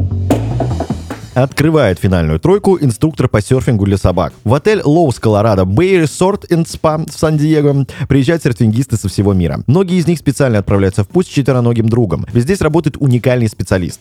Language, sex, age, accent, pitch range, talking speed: Russian, male, 20-39, native, 100-145 Hz, 160 wpm